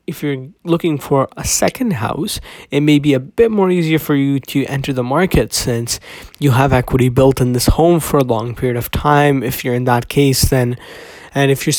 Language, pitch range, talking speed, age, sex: English, 130-160 Hz, 220 wpm, 20-39, male